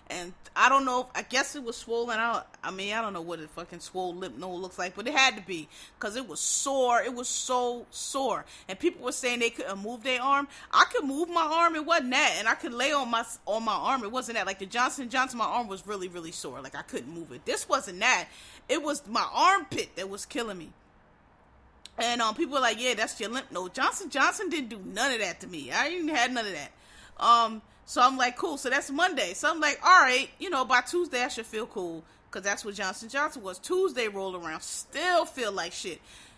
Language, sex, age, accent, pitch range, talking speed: English, female, 30-49, American, 205-275 Hz, 245 wpm